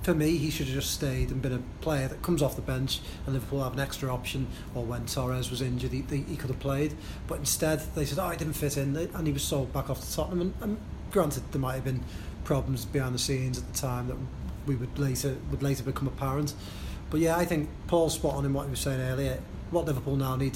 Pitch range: 130-150 Hz